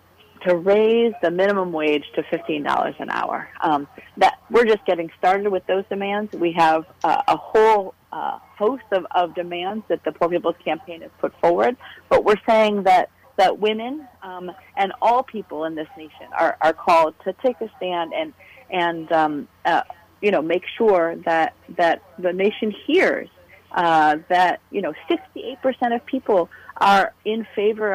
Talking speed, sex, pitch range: 170 wpm, female, 170-220 Hz